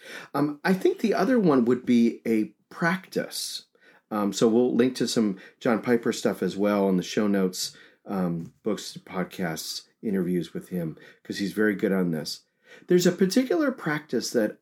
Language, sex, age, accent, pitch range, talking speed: English, male, 40-59, American, 105-160 Hz, 170 wpm